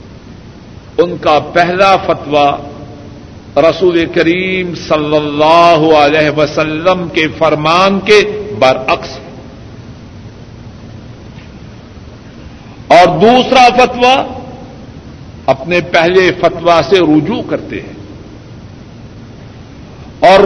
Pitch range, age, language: 140-200 Hz, 60-79, Urdu